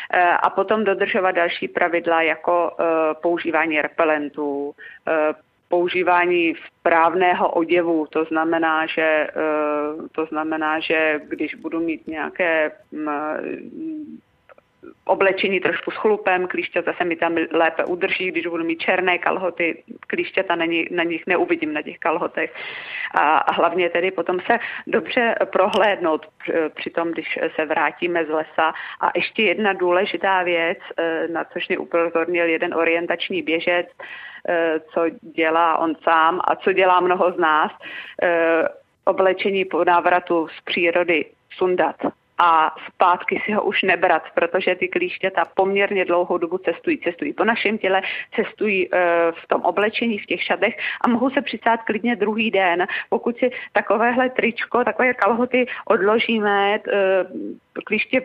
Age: 30-49